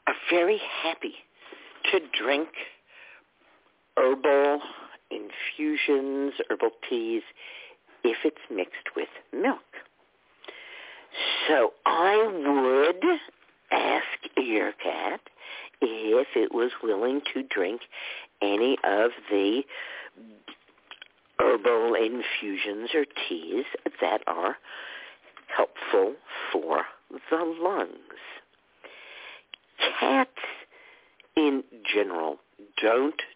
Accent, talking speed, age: American, 75 wpm, 50-69